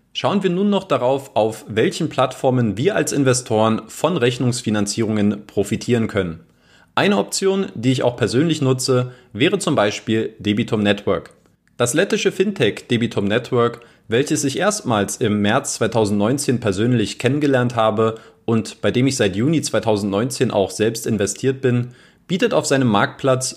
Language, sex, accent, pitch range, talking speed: German, male, German, 105-150 Hz, 145 wpm